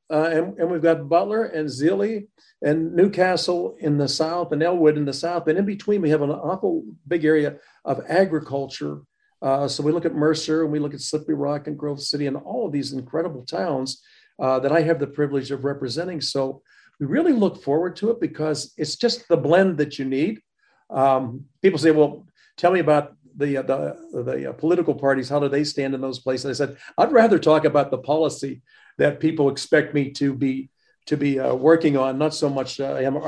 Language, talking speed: English, 210 wpm